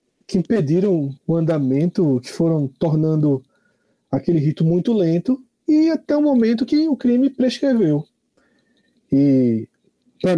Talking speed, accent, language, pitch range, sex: 120 wpm, Brazilian, Portuguese, 140-200 Hz, male